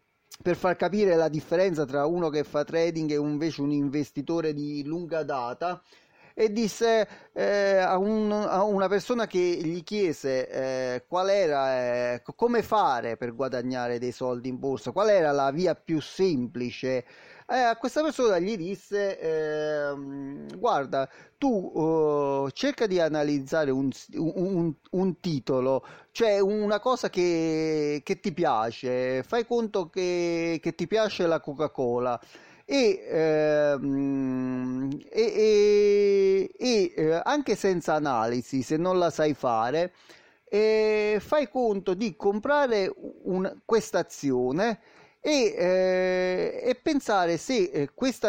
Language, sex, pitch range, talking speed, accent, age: Italian, male, 145-215 Hz, 130 wpm, native, 30-49